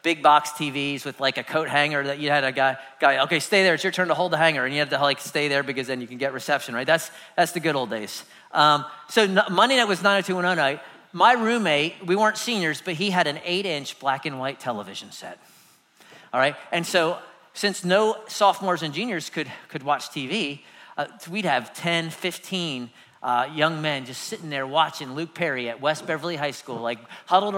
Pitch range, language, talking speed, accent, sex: 140-185 Hz, English, 220 wpm, American, male